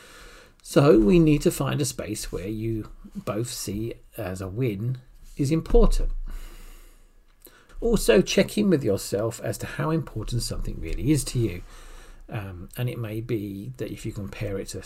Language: English